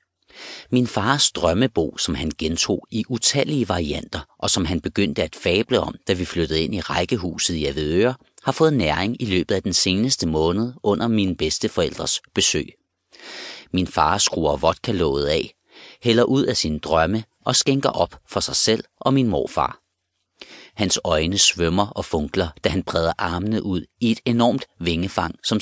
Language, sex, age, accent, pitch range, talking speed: Danish, male, 30-49, native, 80-115 Hz, 165 wpm